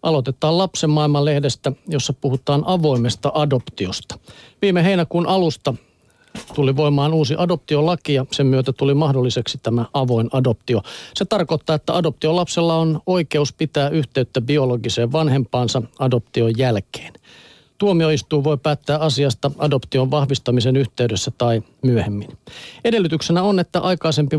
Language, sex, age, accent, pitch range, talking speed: Finnish, male, 50-69, native, 130-155 Hz, 115 wpm